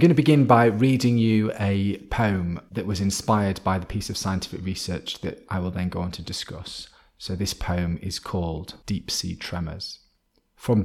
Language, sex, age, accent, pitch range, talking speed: English, male, 30-49, British, 95-105 Hz, 190 wpm